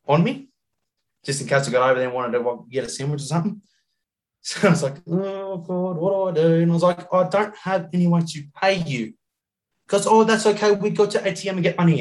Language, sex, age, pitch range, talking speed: English, male, 20-39, 125-175 Hz, 245 wpm